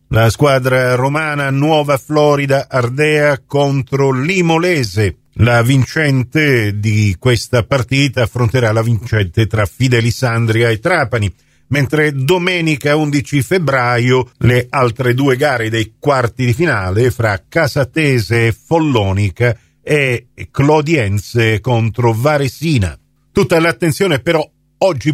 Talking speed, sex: 105 wpm, male